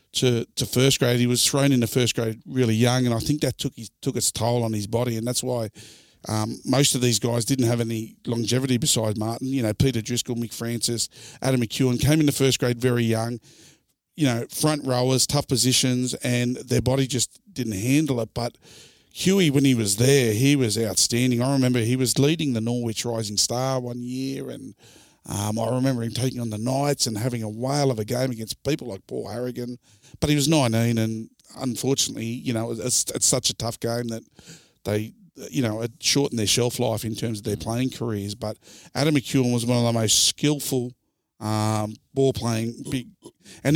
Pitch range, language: 115-130 Hz, English